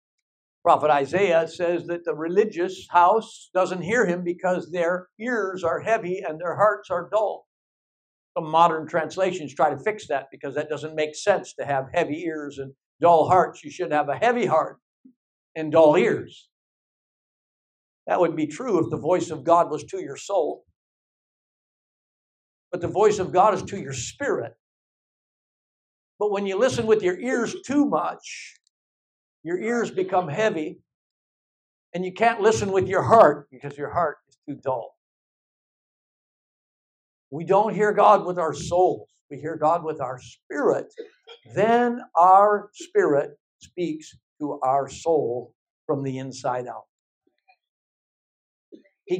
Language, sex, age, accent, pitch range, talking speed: English, male, 60-79, American, 155-215 Hz, 150 wpm